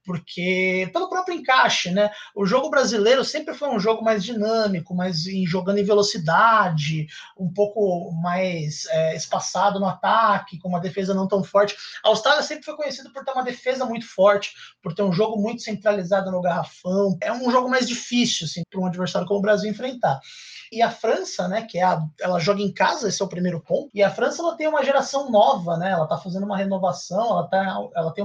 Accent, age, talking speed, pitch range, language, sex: Brazilian, 20-39, 190 wpm, 180-225 Hz, Portuguese, male